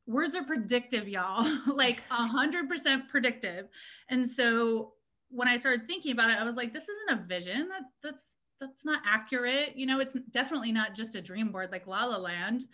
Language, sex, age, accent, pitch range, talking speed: English, female, 30-49, American, 205-255 Hz, 200 wpm